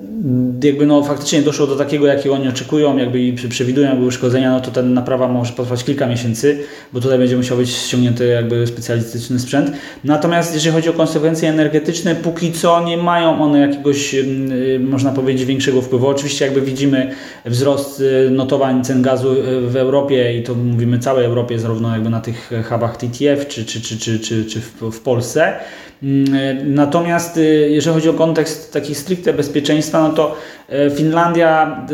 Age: 20-39